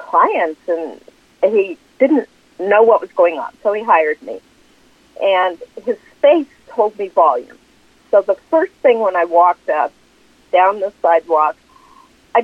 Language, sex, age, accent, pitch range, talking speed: English, female, 50-69, American, 190-305 Hz, 150 wpm